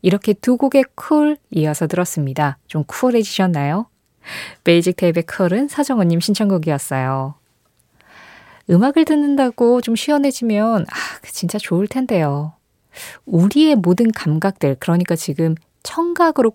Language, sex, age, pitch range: Korean, female, 20-39, 165-245 Hz